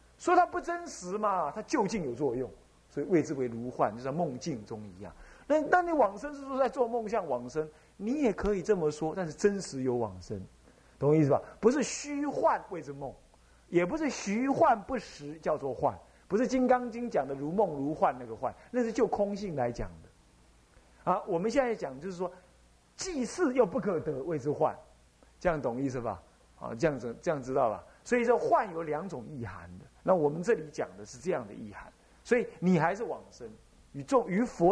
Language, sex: Chinese, male